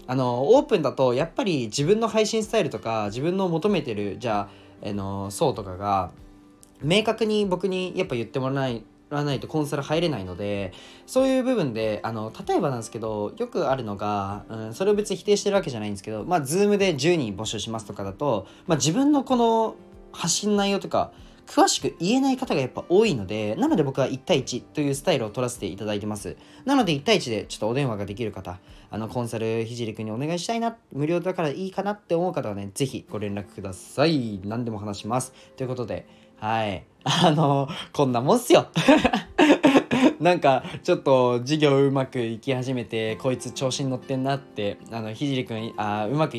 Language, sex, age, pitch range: Japanese, male, 20-39, 110-180 Hz